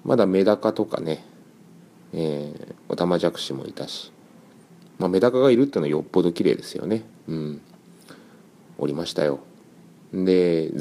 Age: 30-49